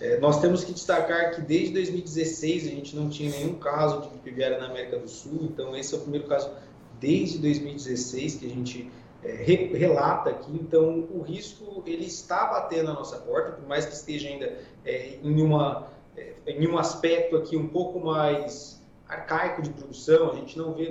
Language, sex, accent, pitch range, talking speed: Portuguese, male, Brazilian, 145-185 Hz, 170 wpm